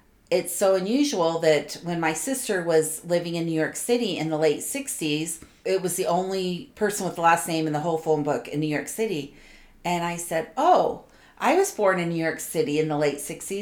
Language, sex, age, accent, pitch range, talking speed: English, female, 40-59, American, 160-220 Hz, 215 wpm